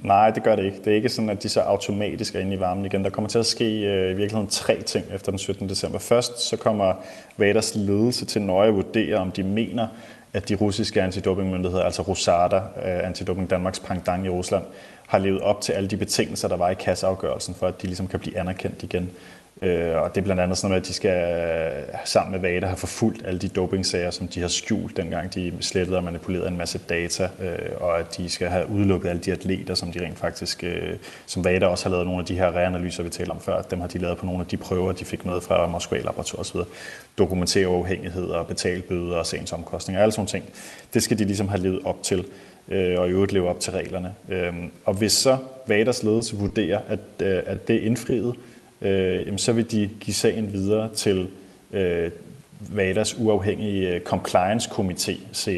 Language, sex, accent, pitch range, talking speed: Danish, male, native, 90-105 Hz, 220 wpm